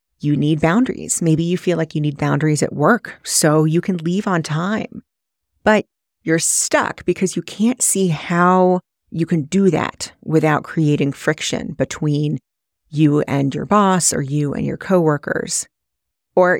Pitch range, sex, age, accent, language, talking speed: 150-185 Hz, female, 30-49, American, English, 160 wpm